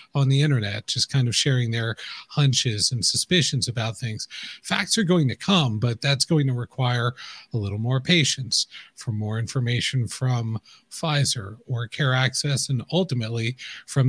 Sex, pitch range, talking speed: male, 120-150 Hz, 160 wpm